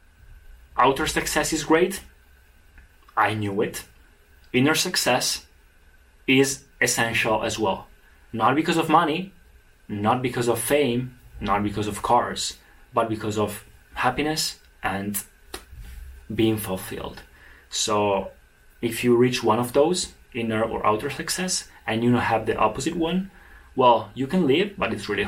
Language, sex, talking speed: Italian, male, 135 wpm